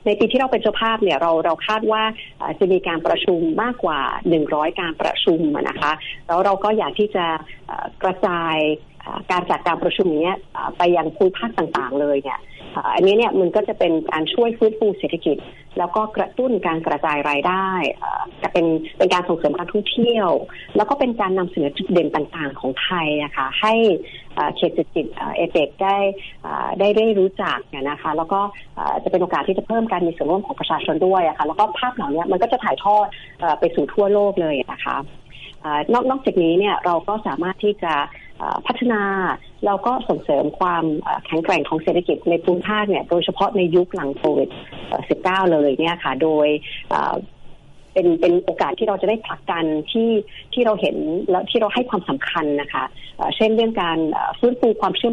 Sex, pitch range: female, 165-215 Hz